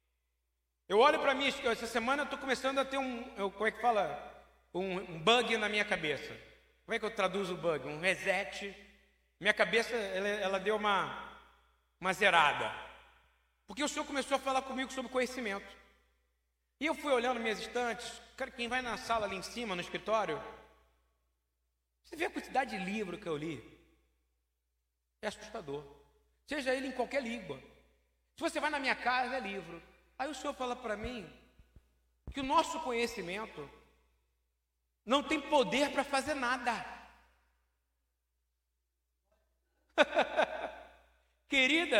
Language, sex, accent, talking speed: Portuguese, male, Brazilian, 150 wpm